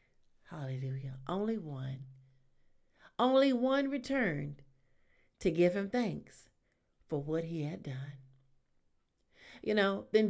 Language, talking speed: English, 105 wpm